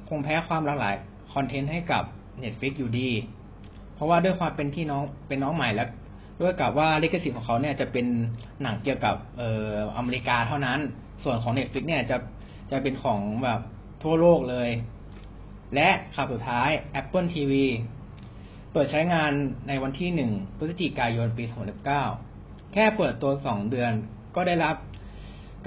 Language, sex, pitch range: Thai, male, 110-145 Hz